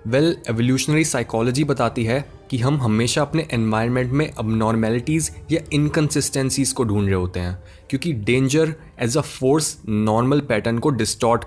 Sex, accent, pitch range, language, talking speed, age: male, native, 110-155 Hz, Hindi, 145 wpm, 20-39